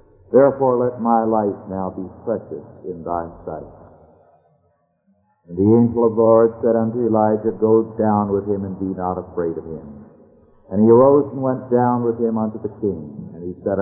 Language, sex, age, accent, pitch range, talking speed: English, male, 60-79, American, 95-115 Hz, 185 wpm